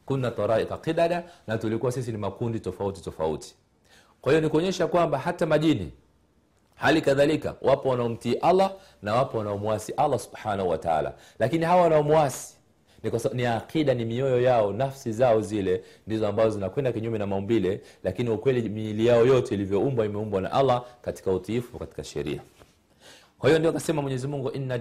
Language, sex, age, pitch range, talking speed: Swahili, male, 40-59, 105-140 Hz, 160 wpm